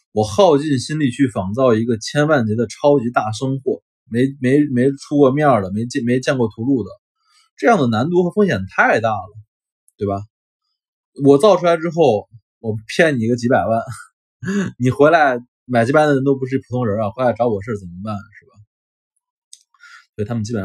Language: Chinese